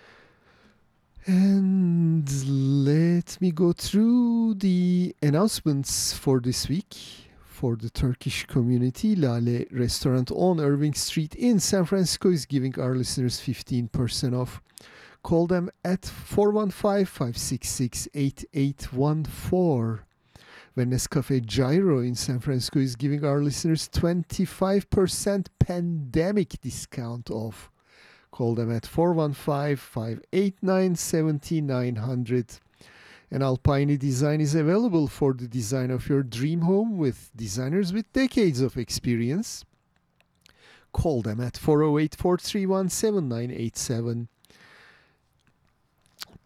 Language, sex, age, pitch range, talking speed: English, male, 50-69, 125-175 Hz, 95 wpm